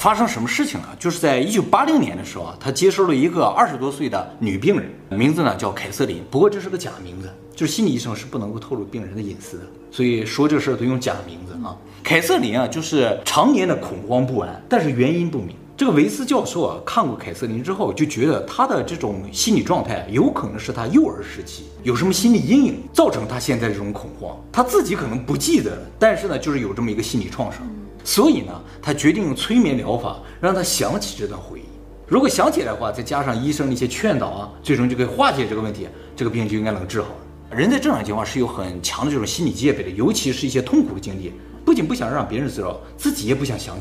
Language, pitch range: Chinese, 105-175 Hz